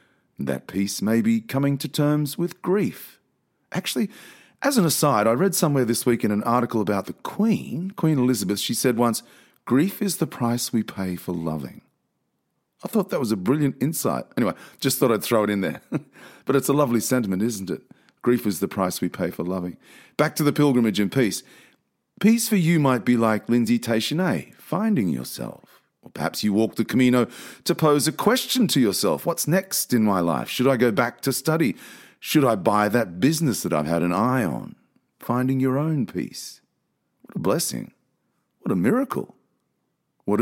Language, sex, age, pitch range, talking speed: English, male, 40-59, 110-150 Hz, 190 wpm